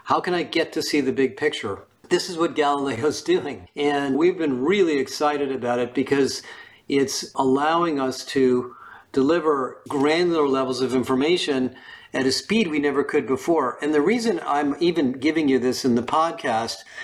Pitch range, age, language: 125-150 Hz, 50-69, English